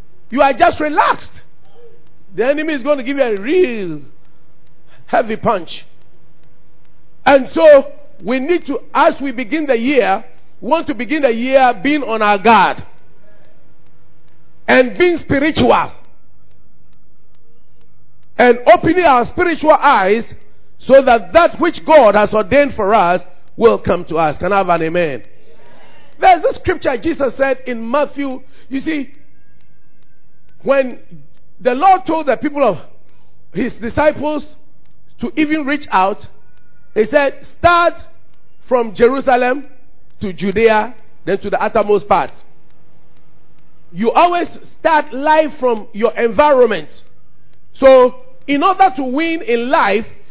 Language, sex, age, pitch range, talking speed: English, male, 50-69, 205-300 Hz, 130 wpm